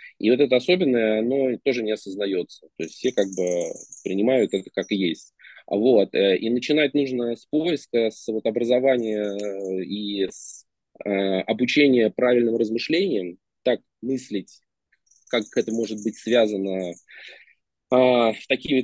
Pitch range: 100-125 Hz